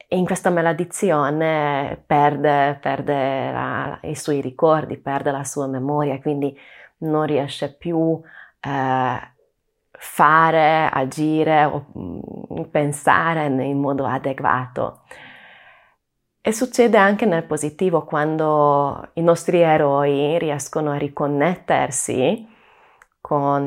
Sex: female